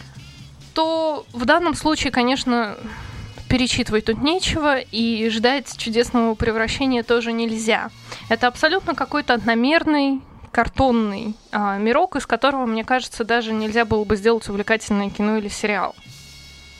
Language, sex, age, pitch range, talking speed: Russian, female, 20-39, 220-275 Hz, 120 wpm